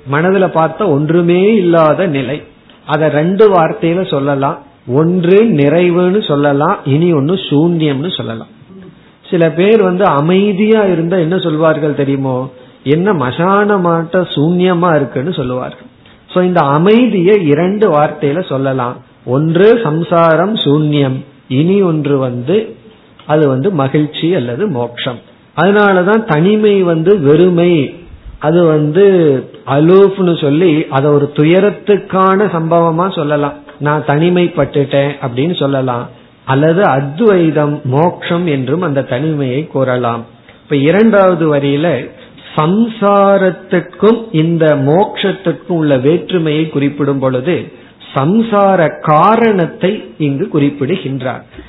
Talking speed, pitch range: 95 wpm, 140-190 Hz